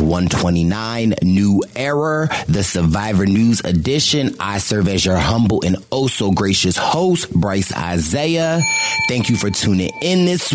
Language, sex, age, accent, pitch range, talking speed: English, male, 30-49, American, 100-150 Hz, 140 wpm